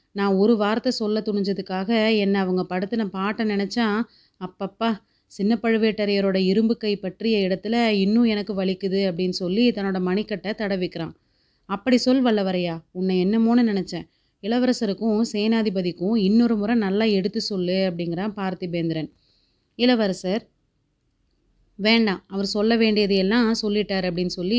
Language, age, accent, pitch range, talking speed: Tamil, 30-49, native, 190-220 Hz, 115 wpm